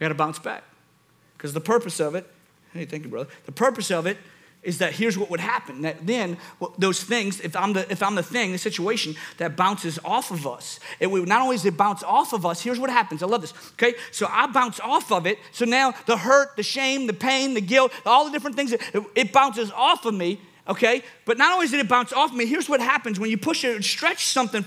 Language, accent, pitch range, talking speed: English, American, 175-260 Hz, 260 wpm